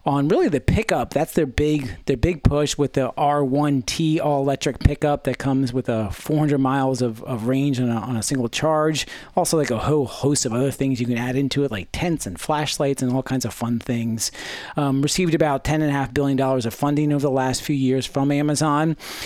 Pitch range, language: 130-155 Hz, English